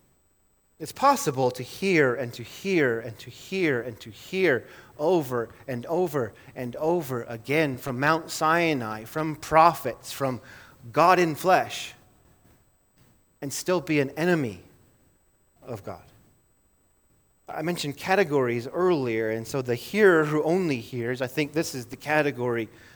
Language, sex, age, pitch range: English, male, 30-49, 120-150 Hz